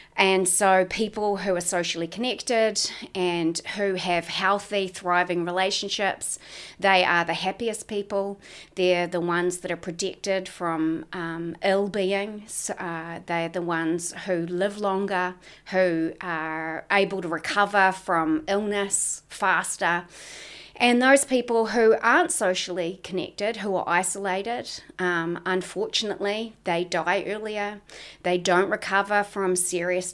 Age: 30-49